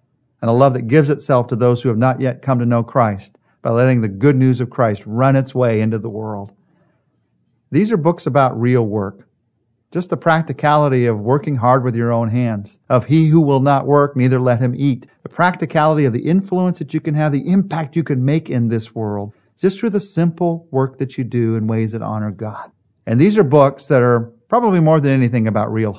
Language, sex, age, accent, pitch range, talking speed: English, male, 50-69, American, 115-145 Hz, 225 wpm